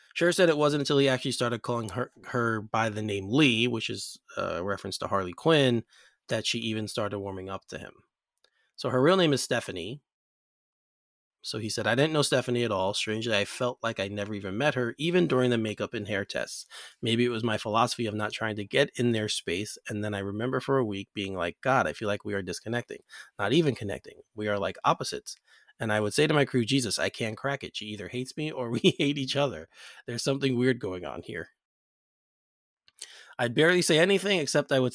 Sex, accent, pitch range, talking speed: male, American, 100-130 Hz, 225 wpm